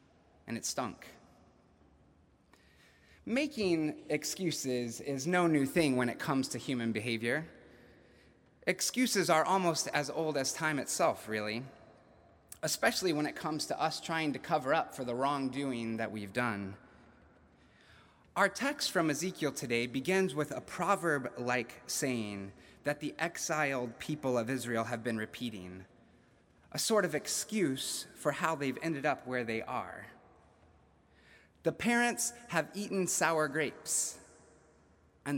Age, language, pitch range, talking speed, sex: 30-49, English, 115-160 Hz, 130 wpm, male